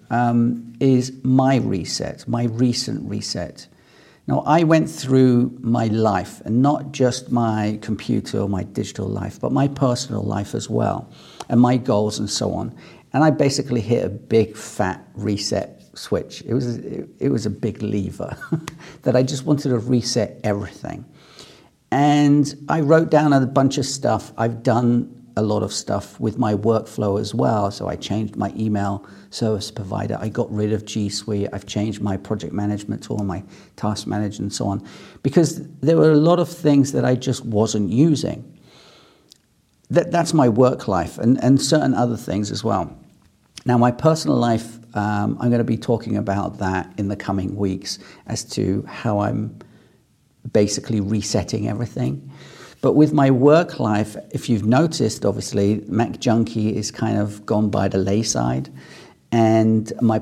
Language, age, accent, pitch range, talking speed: English, 50-69, British, 105-130 Hz, 170 wpm